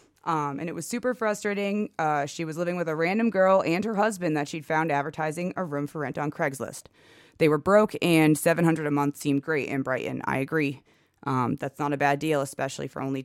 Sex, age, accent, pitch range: female, 20-39, American, 145-190 Hz